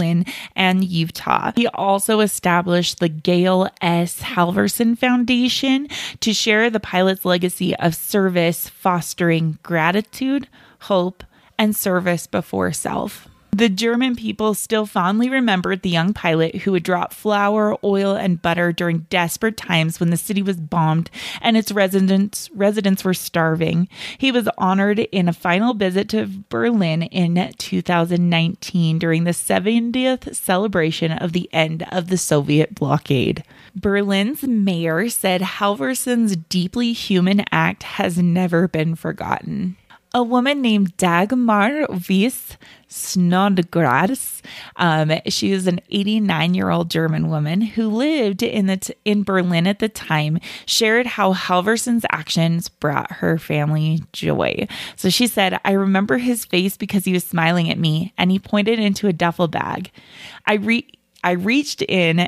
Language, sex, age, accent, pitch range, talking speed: English, female, 20-39, American, 175-215 Hz, 135 wpm